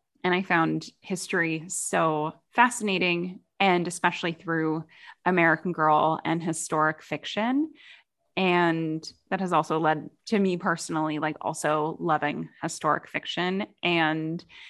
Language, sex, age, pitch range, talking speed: English, female, 10-29, 160-200 Hz, 115 wpm